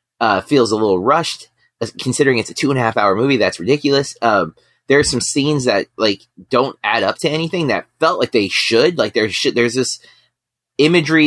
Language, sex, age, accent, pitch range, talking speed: English, male, 30-49, American, 115-145 Hz, 215 wpm